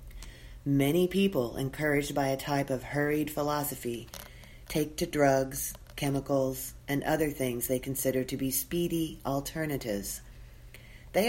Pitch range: 125-160 Hz